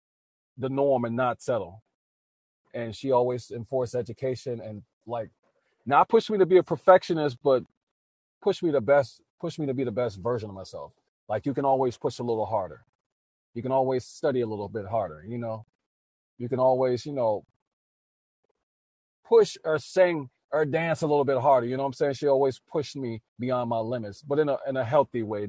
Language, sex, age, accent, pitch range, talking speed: English, male, 40-59, American, 115-135 Hz, 200 wpm